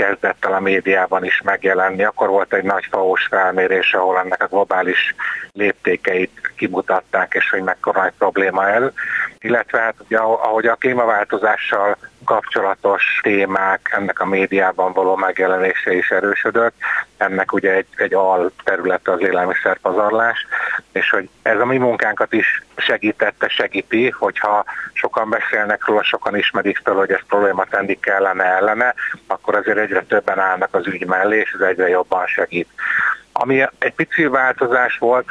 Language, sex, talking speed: Hungarian, male, 150 wpm